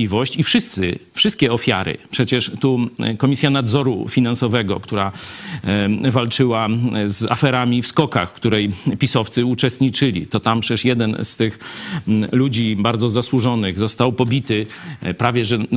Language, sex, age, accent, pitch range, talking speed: Polish, male, 40-59, native, 110-140 Hz, 120 wpm